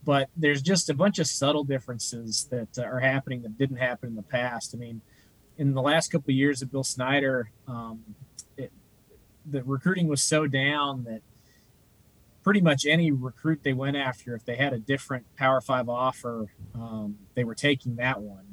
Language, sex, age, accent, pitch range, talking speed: English, male, 30-49, American, 120-140 Hz, 185 wpm